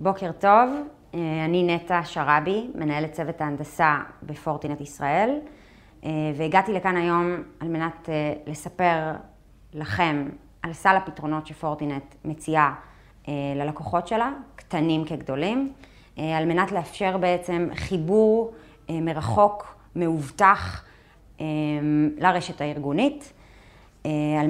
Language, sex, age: Hebrew, female, 30-49